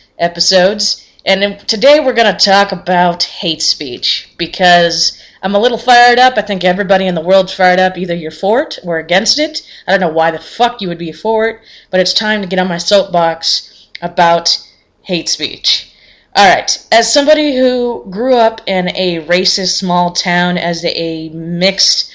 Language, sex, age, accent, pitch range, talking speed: English, female, 20-39, American, 180-220 Hz, 185 wpm